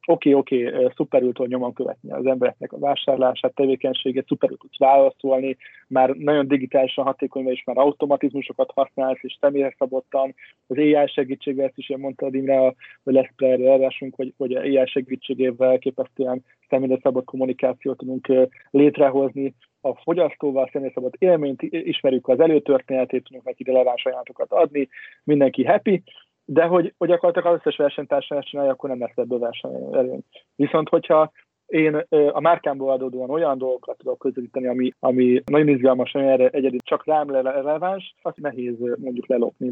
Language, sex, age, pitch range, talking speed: Hungarian, male, 20-39, 130-145 Hz, 145 wpm